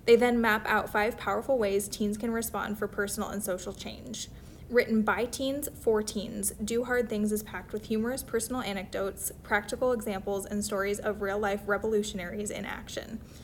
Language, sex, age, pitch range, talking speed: English, female, 10-29, 200-240 Hz, 170 wpm